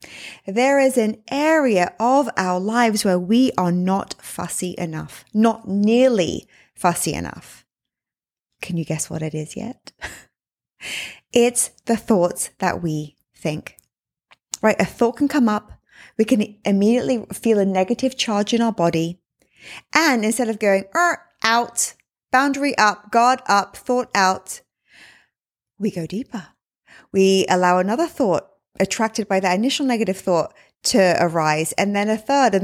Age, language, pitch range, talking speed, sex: 20-39, English, 190-255 Hz, 145 wpm, female